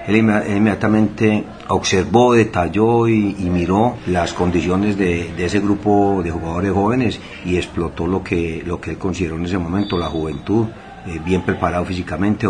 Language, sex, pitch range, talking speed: Spanish, male, 85-100 Hz, 160 wpm